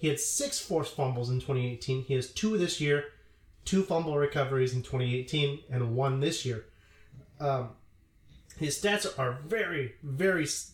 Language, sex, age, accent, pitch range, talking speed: English, male, 30-49, American, 115-140 Hz, 150 wpm